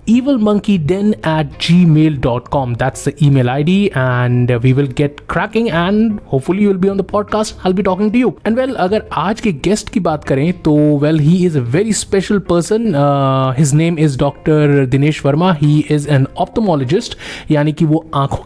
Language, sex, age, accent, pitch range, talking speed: Hindi, male, 20-39, native, 145-205 Hz, 180 wpm